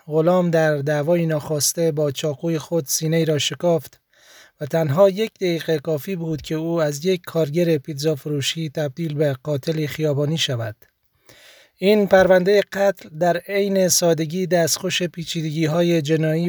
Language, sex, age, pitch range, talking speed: Persian, male, 30-49, 155-180 Hz, 140 wpm